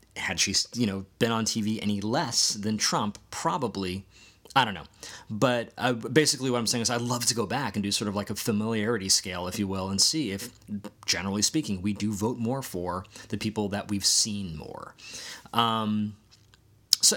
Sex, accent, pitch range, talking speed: male, American, 95-115 Hz, 195 wpm